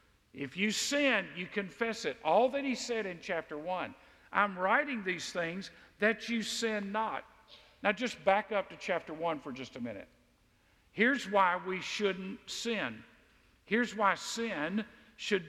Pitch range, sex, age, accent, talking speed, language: 165-240 Hz, male, 50-69, American, 160 wpm, English